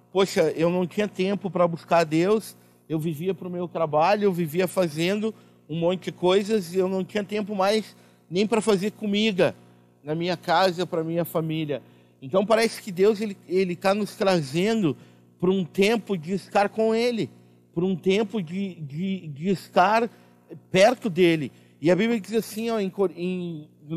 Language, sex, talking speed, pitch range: Portuguese, male, 185 wpm, 165-200 Hz